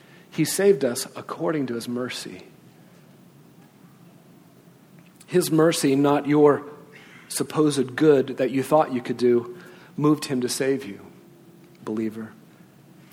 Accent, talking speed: American, 115 wpm